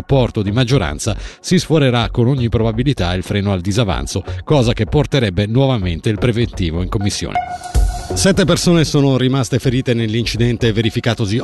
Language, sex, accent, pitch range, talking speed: Italian, male, native, 110-135 Hz, 140 wpm